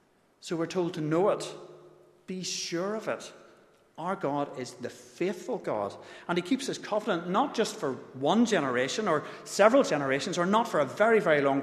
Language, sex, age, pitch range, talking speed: English, male, 40-59, 130-175 Hz, 185 wpm